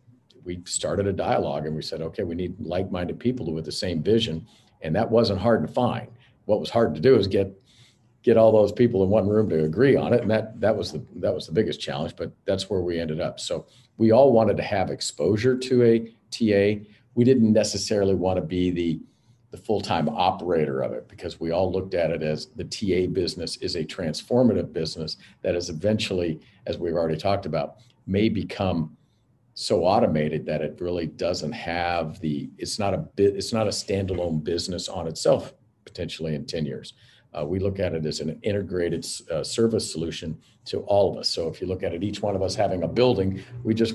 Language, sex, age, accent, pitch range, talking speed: English, male, 50-69, American, 85-110 Hz, 210 wpm